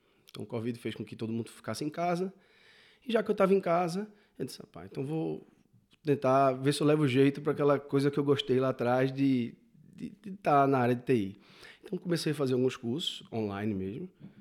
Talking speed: 215 wpm